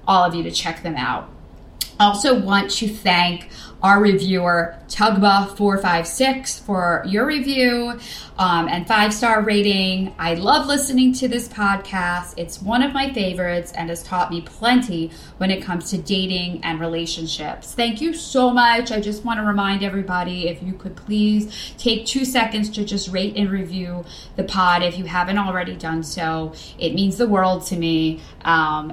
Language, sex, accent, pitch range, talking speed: English, female, American, 175-225 Hz, 170 wpm